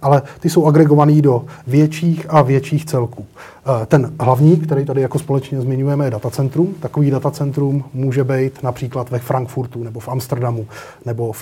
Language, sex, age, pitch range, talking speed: Slovak, male, 30-49, 125-150 Hz, 160 wpm